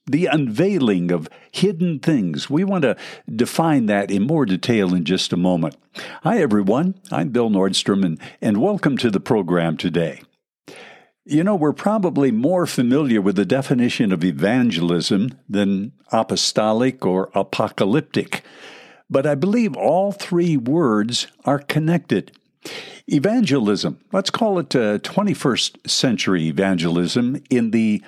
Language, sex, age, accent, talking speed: English, male, 60-79, American, 130 wpm